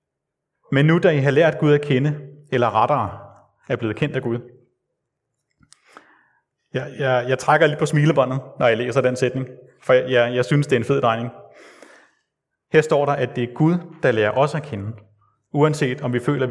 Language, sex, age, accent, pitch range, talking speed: Danish, male, 30-49, native, 125-155 Hz, 195 wpm